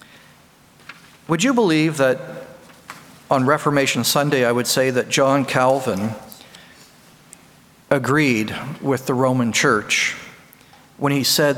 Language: English